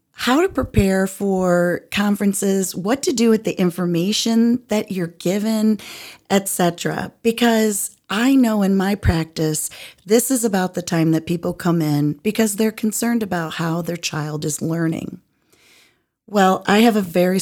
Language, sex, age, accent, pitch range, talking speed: English, female, 40-59, American, 165-215 Hz, 150 wpm